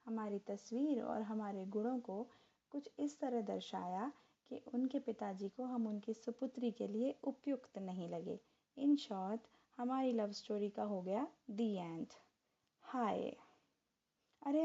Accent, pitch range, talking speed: native, 210-260 Hz, 130 wpm